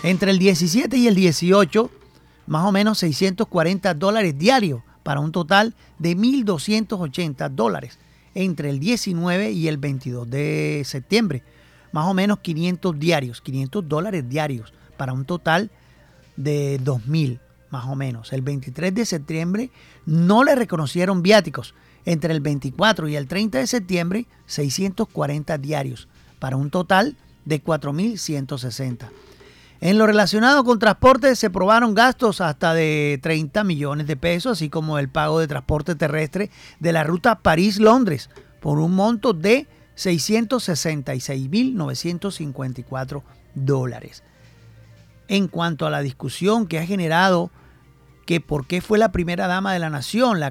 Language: Spanish